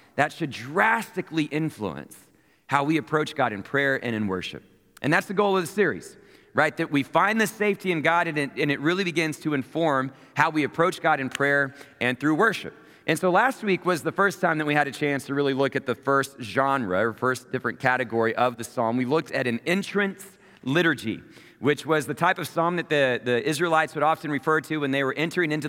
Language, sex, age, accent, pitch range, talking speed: English, male, 40-59, American, 140-170 Hz, 220 wpm